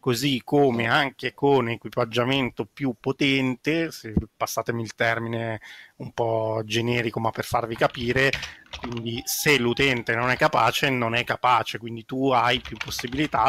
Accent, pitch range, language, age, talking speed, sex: native, 115-135 Hz, Italian, 30-49, 140 wpm, male